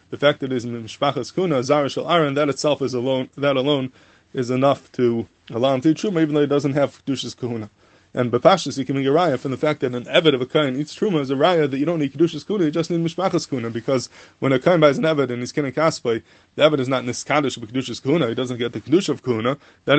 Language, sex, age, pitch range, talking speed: English, male, 20-39, 125-150 Hz, 270 wpm